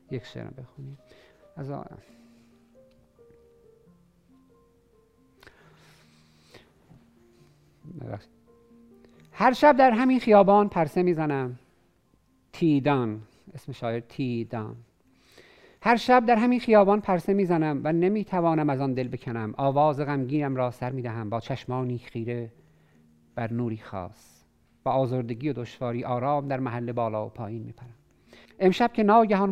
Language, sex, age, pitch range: Persian, male, 50-69, 115-180 Hz